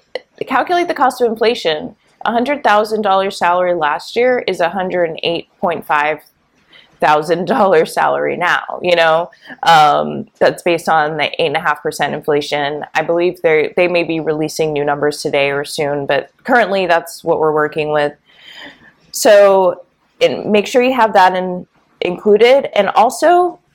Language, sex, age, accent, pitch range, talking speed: English, female, 20-39, American, 160-215 Hz, 165 wpm